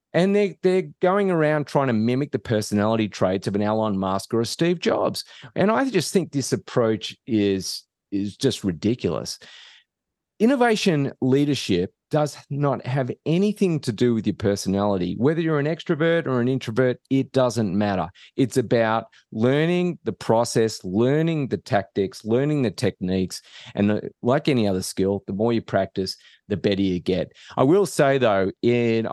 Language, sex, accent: English, male, Australian